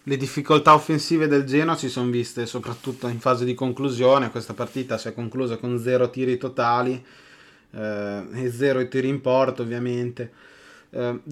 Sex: male